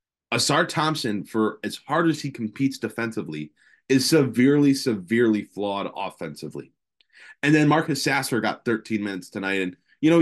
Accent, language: American, English